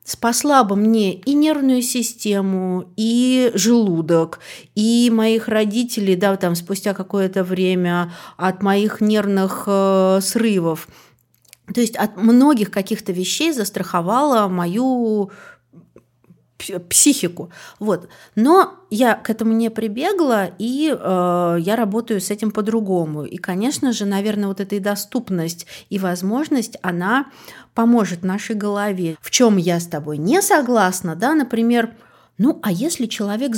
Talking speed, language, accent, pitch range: 125 wpm, Russian, native, 190-255 Hz